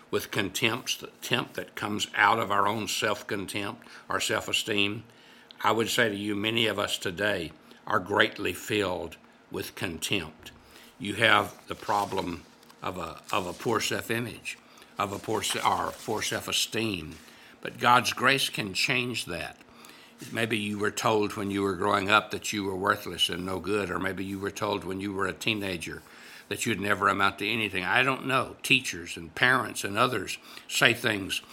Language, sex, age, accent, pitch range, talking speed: English, male, 60-79, American, 100-115 Hz, 175 wpm